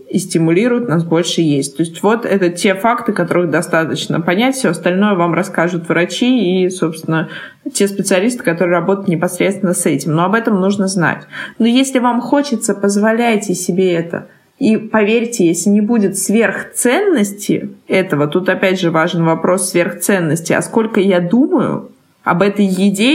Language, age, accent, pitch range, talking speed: Russian, 20-39, native, 175-220 Hz, 155 wpm